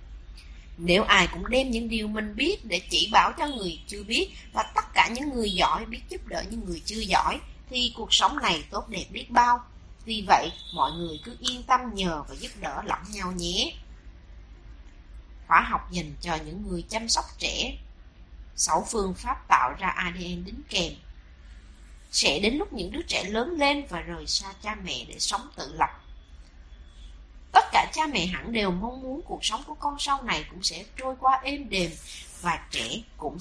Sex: female